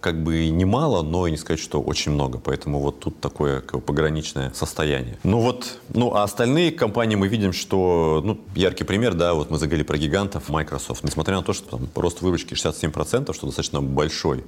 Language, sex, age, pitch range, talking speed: Russian, male, 30-49, 70-85 Hz, 190 wpm